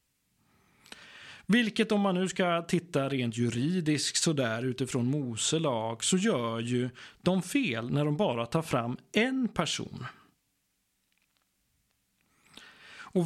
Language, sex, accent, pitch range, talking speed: Swedish, male, native, 125-190 Hz, 110 wpm